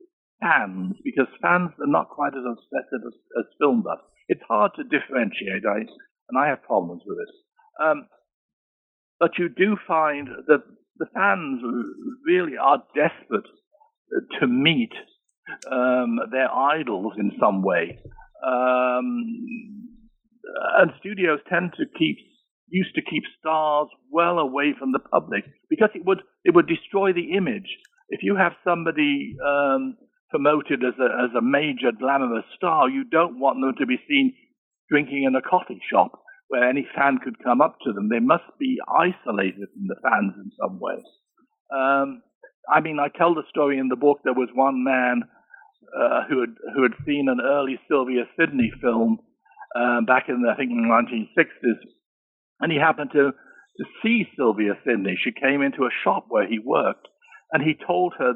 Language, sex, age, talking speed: English, male, 60-79, 165 wpm